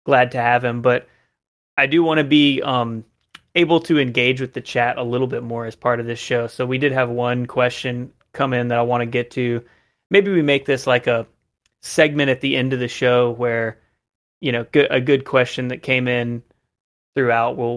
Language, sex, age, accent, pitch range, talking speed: English, male, 30-49, American, 120-140 Hz, 215 wpm